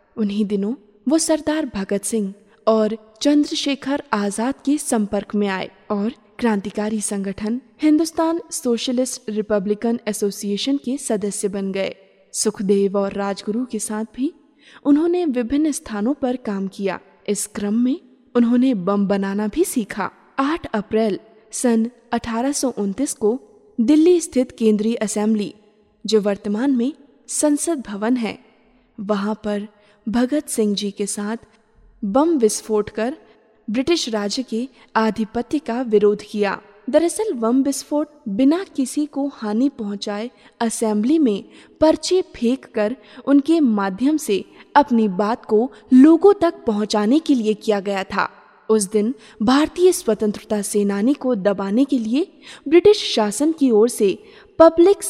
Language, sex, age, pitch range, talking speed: Hindi, female, 20-39, 210-280 Hz, 130 wpm